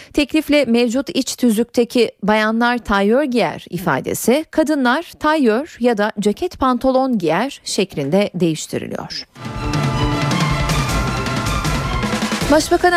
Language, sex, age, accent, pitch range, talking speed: Turkish, female, 40-59, native, 200-280 Hz, 85 wpm